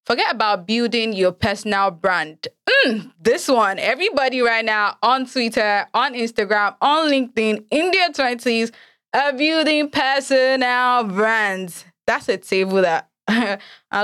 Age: 20-39